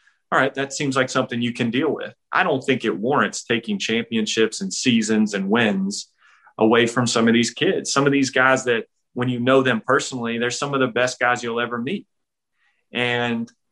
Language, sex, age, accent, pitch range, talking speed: English, male, 30-49, American, 110-130 Hz, 205 wpm